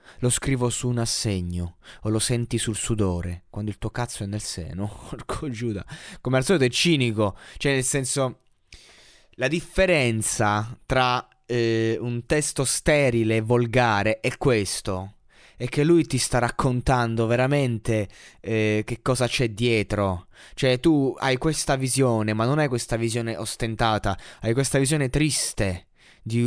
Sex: male